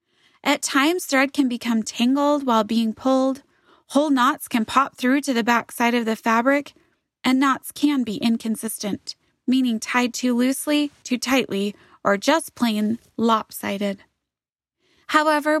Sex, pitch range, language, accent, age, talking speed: female, 230-300 Hz, English, American, 20-39, 140 wpm